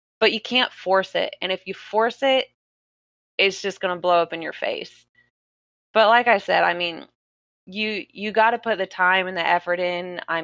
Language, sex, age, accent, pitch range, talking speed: English, female, 20-39, American, 170-205 Hz, 215 wpm